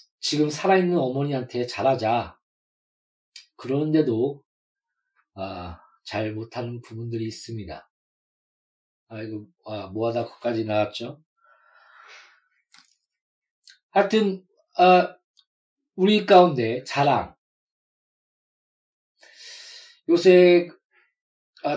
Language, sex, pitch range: Korean, male, 130-180 Hz